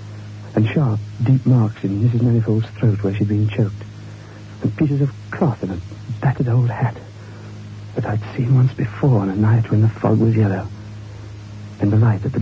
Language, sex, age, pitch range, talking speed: English, male, 60-79, 105-110 Hz, 190 wpm